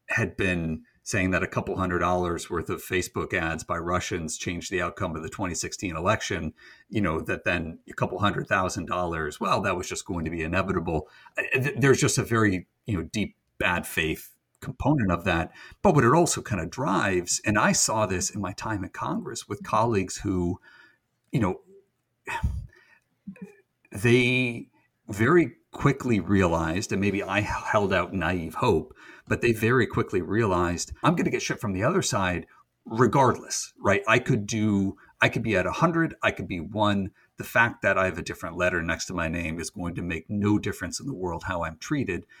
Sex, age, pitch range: male, 50-69, 90-120 Hz